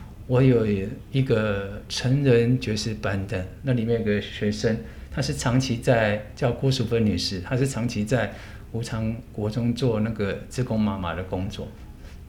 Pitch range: 100-130 Hz